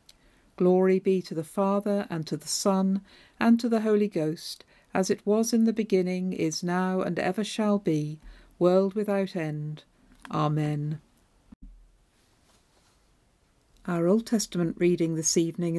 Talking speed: 135 wpm